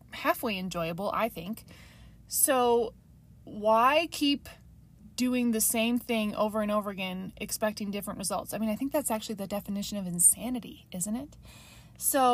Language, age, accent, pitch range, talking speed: English, 20-39, American, 205-240 Hz, 150 wpm